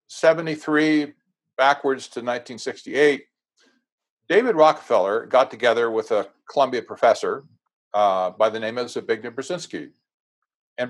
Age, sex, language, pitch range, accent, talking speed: 60-79, male, English, 130-165 Hz, American, 110 wpm